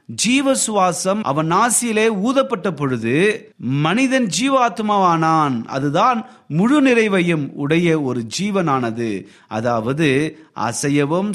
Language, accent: Tamil, native